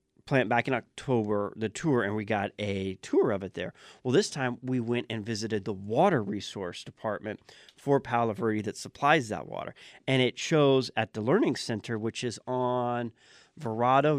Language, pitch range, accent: English, 110-130 Hz, American